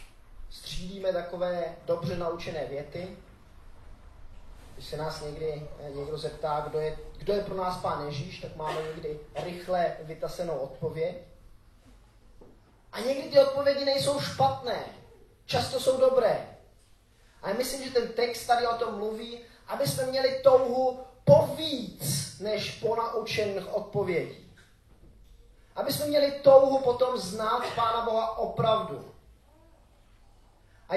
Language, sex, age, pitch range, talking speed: Czech, male, 30-49, 155-235 Hz, 120 wpm